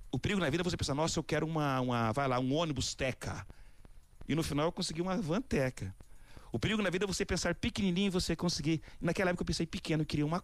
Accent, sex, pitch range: Brazilian, male, 115-155 Hz